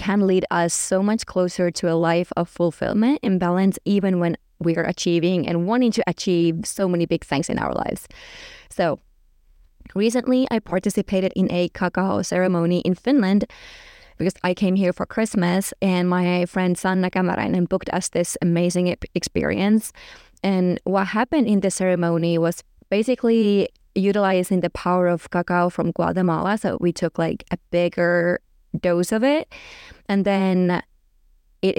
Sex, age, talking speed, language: female, 20-39, 155 wpm, English